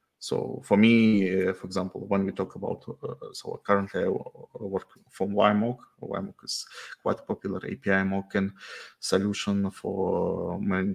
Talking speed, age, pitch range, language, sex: 145 wpm, 20-39, 95-110 Hz, English, male